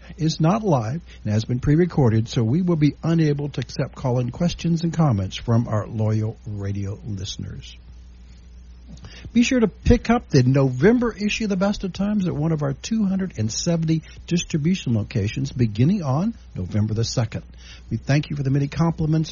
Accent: American